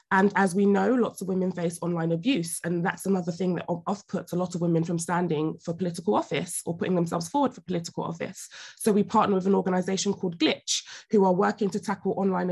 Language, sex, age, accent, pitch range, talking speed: English, female, 20-39, British, 170-200 Hz, 225 wpm